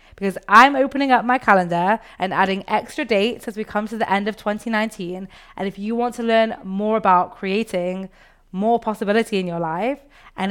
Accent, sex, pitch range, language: British, female, 185-225 Hz, English